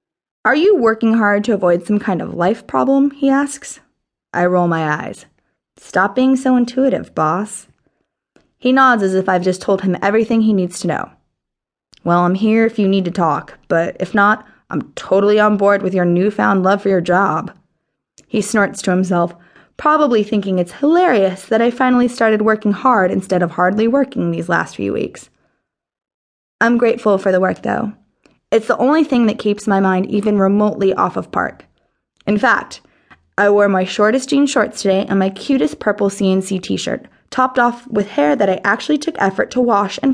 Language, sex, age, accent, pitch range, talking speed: English, female, 20-39, American, 190-240 Hz, 185 wpm